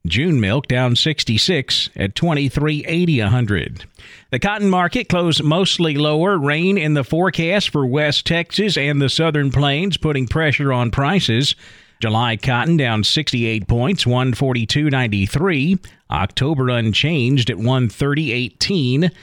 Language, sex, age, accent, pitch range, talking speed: English, male, 40-59, American, 120-160 Hz, 140 wpm